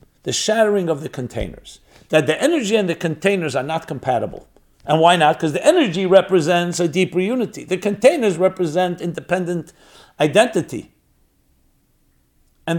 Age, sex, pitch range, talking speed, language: 60-79, male, 140-200 Hz, 140 wpm, English